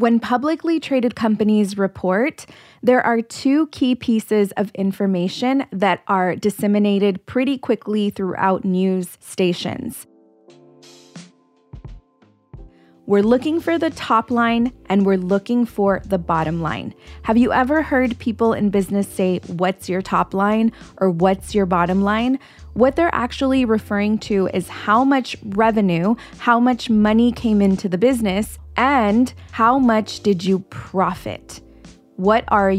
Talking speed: 135 wpm